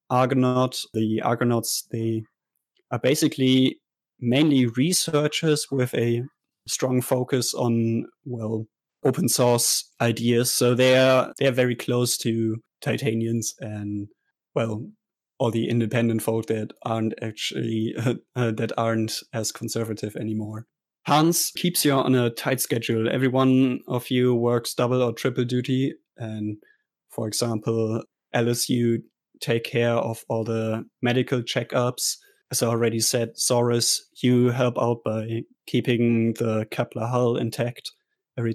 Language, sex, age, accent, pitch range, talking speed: English, male, 20-39, German, 115-130 Hz, 125 wpm